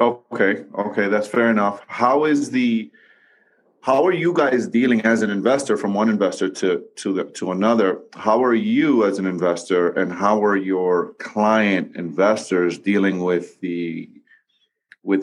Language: English